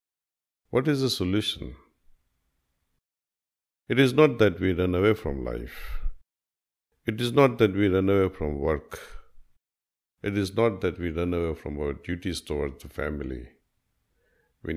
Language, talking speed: Hindi, 145 wpm